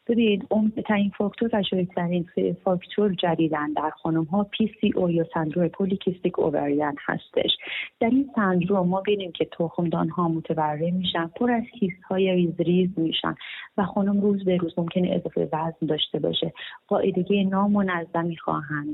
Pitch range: 170-195 Hz